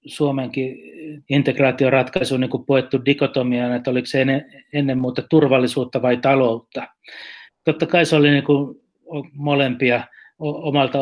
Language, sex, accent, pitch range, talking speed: Finnish, male, native, 125-140 Hz, 125 wpm